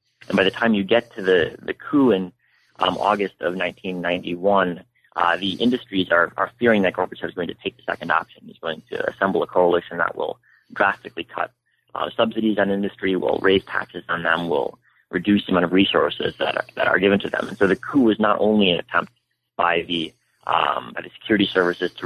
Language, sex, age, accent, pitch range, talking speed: English, male, 30-49, American, 90-105 Hz, 215 wpm